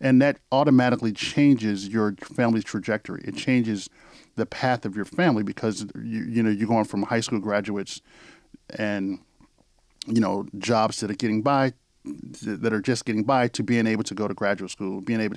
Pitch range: 100-115 Hz